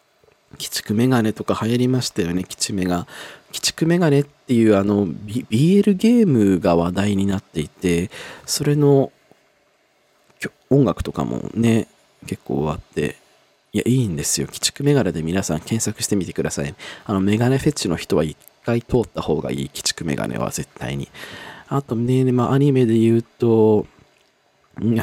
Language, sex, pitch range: Japanese, male, 100-150 Hz